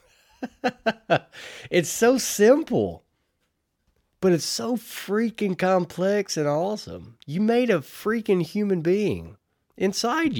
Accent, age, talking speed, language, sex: American, 30-49, 100 wpm, English, male